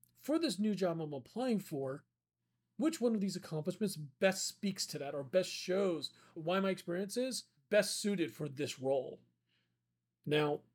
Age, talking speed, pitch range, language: 40-59, 160 wpm, 140-195 Hz, English